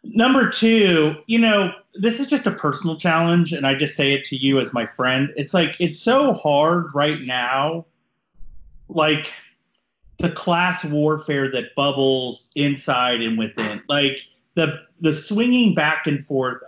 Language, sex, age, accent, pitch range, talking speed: English, male, 30-49, American, 135-175 Hz, 155 wpm